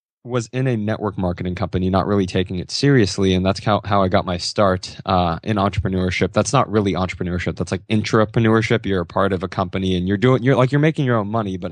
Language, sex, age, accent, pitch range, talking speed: English, male, 20-39, American, 95-115 Hz, 235 wpm